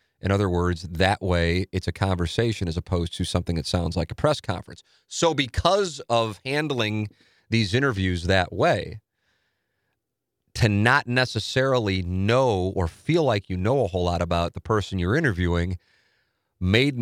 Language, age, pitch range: English, 30-49, 90-115 Hz